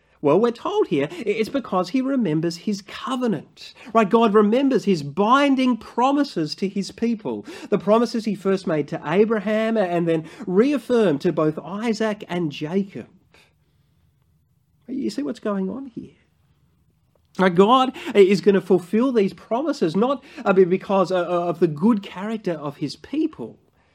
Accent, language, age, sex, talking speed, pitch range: Australian, English, 30-49, male, 140 wpm, 165-230 Hz